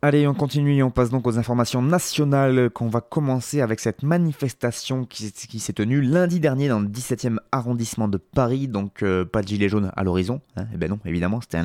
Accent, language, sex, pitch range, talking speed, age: French, French, male, 110-150 Hz, 220 wpm, 20-39